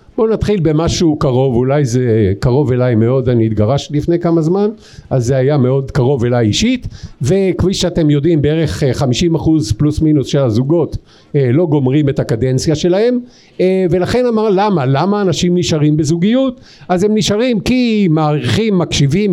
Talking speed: 150 wpm